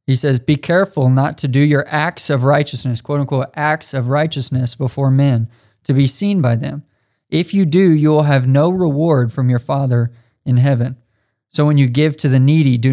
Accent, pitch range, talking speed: American, 125-150 Hz, 205 wpm